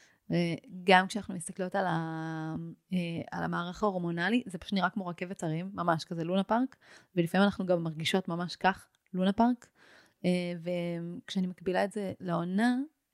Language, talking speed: Hebrew, 140 wpm